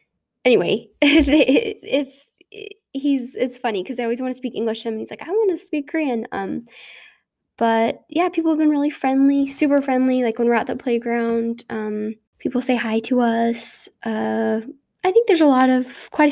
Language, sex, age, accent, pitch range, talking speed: English, female, 10-29, American, 220-265 Hz, 200 wpm